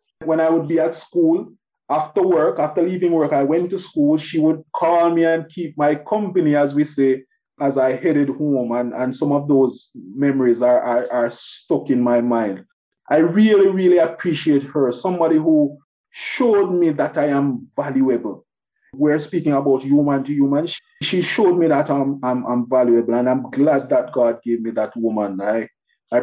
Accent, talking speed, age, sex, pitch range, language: Nigerian, 185 wpm, 30-49, male, 125-175 Hz, English